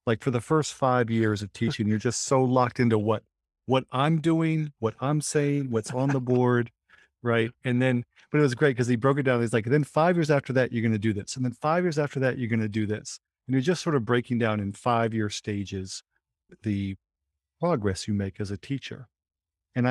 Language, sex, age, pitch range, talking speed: English, male, 40-59, 105-125 Hz, 235 wpm